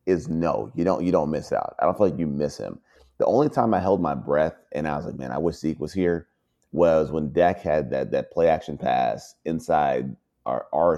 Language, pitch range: English, 75-95 Hz